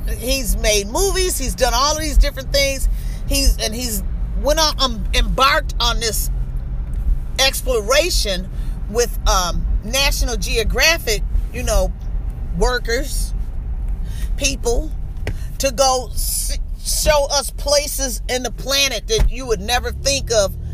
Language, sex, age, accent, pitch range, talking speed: English, female, 40-59, American, 215-280 Hz, 125 wpm